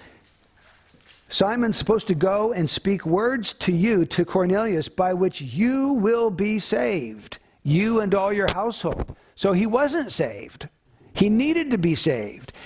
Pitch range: 180-230 Hz